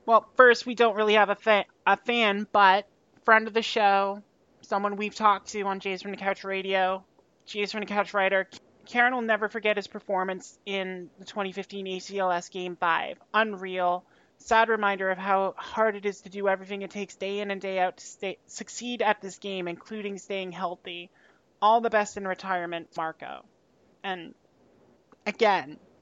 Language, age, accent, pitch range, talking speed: English, 30-49, American, 185-210 Hz, 175 wpm